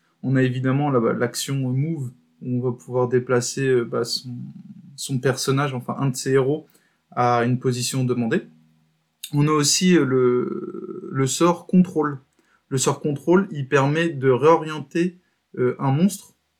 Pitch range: 125-155 Hz